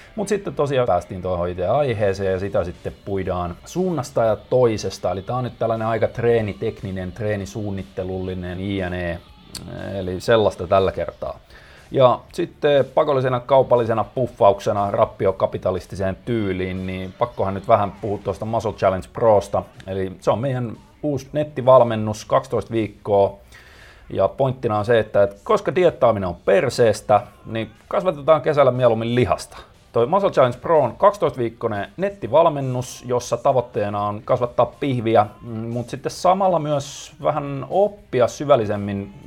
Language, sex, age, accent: Finnish, male, 30-49, native